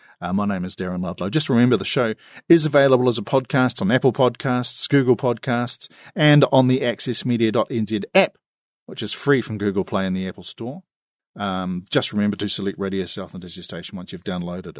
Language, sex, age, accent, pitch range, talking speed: English, male, 40-59, Australian, 115-155 Hz, 195 wpm